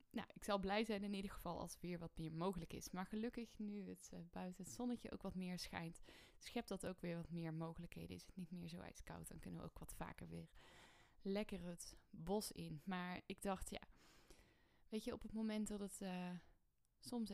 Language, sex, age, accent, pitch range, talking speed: Dutch, female, 10-29, Dutch, 170-205 Hz, 220 wpm